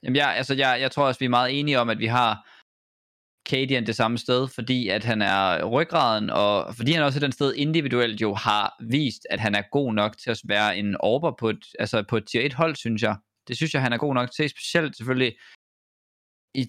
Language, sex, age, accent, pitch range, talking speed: Danish, male, 20-39, native, 115-145 Hz, 235 wpm